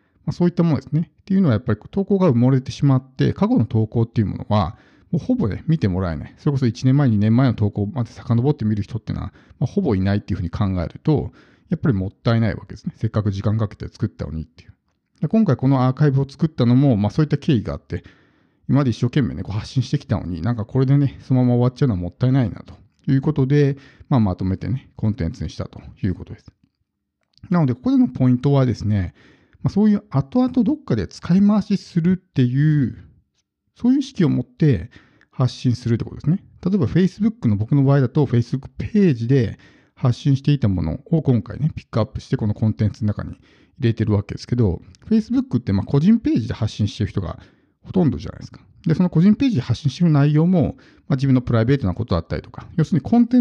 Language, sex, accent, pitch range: Japanese, male, native, 110-155 Hz